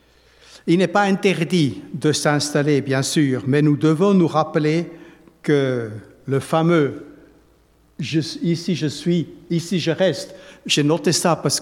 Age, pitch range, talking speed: 60-79, 130-160 Hz, 155 wpm